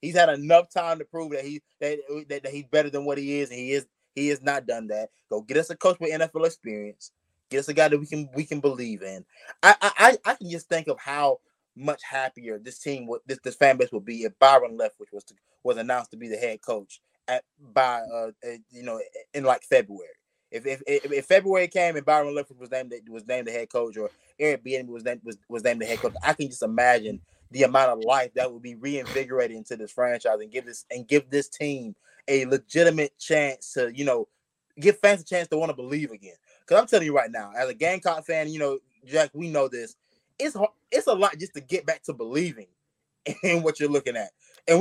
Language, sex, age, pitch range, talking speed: English, male, 20-39, 130-170 Hz, 240 wpm